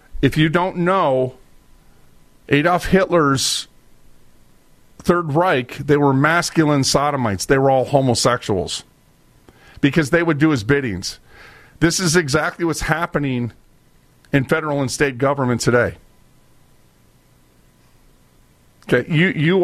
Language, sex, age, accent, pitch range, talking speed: English, male, 40-59, American, 130-165 Hz, 110 wpm